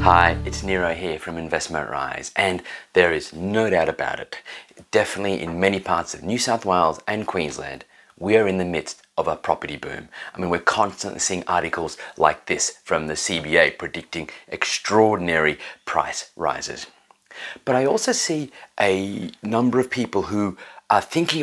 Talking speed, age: 165 wpm, 30-49